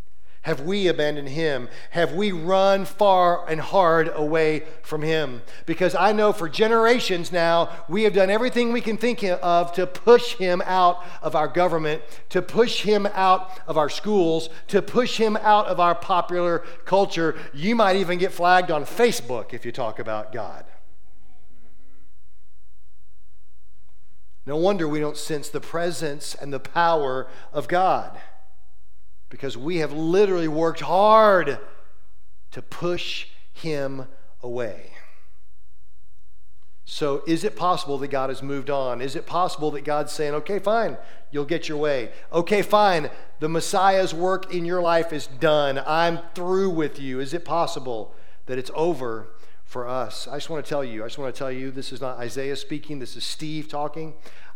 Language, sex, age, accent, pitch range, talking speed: English, male, 40-59, American, 135-180 Hz, 160 wpm